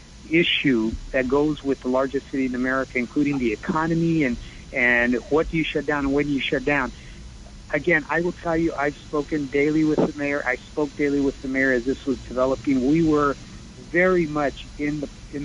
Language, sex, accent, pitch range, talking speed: English, male, American, 130-165 Hz, 200 wpm